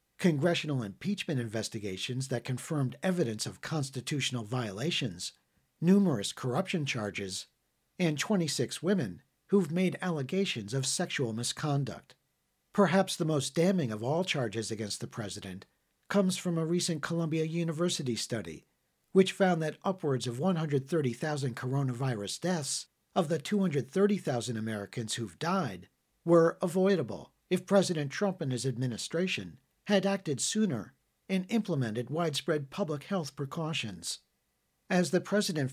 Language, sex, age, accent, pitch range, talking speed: English, male, 50-69, American, 125-185 Hz, 120 wpm